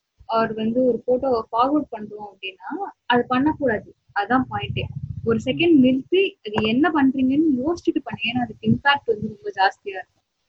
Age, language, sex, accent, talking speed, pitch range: 20-39, Tamil, female, native, 155 wpm, 230-310 Hz